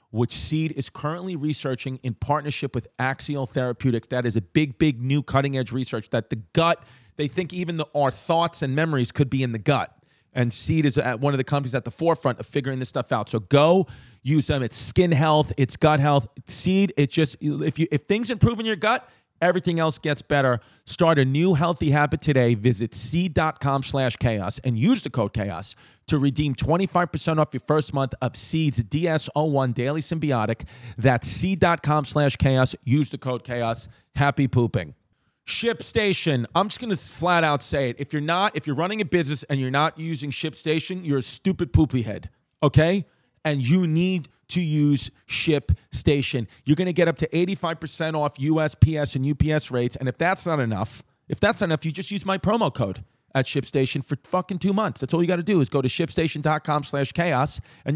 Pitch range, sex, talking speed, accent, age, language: 130-165 Hz, male, 195 wpm, American, 40-59, English